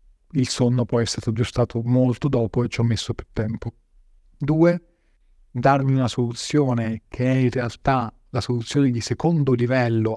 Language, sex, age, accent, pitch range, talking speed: Italian, male, 40-59, native, 115-140 Hz, 155 wpm